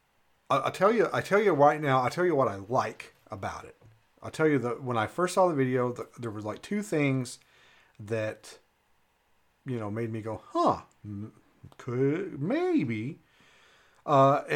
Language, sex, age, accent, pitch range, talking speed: English, male, 40-59, American, 110-135 Hz, 175 wpm